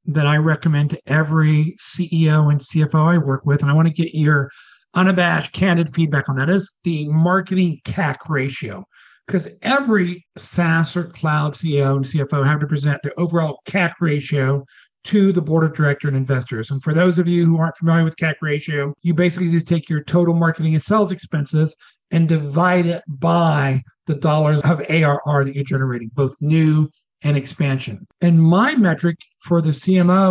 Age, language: 50-69, English